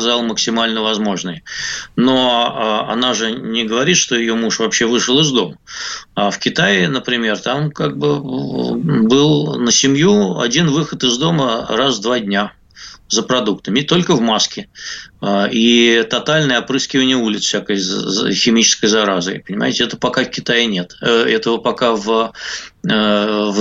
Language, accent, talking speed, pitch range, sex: Russian, native, 135 wpm, 115-145 Hz, male